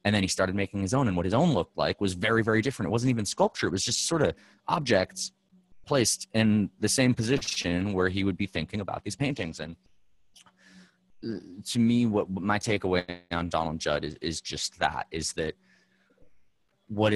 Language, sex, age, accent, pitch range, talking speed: English, male, 30-49, American, 90-115 Hz, 195 wpm